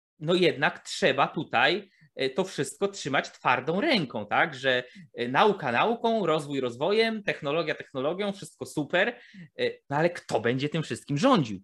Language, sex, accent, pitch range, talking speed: Polish, male, native, 130-185 Hz, 135 wpm